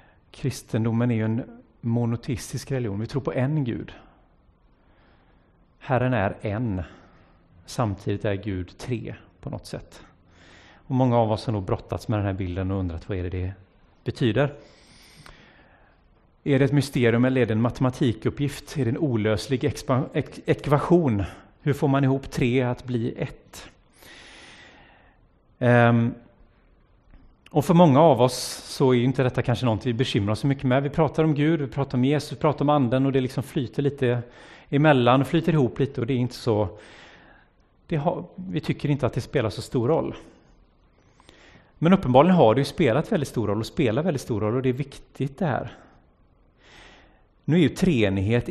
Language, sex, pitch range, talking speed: Swedish, male, 105-140 Hz, 175 wpm